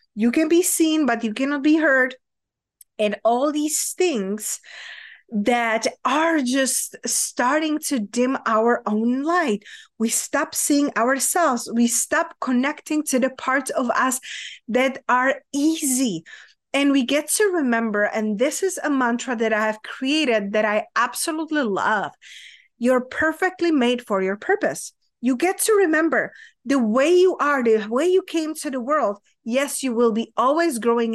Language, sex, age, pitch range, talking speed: English, female, 30-49, 230-310 Hz, 160 wpm